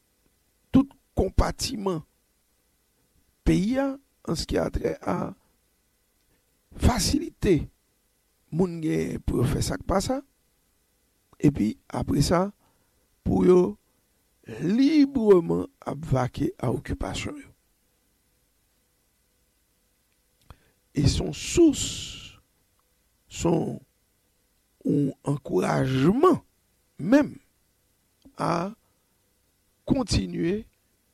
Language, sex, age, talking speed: English, male, 60-79, 60 wpm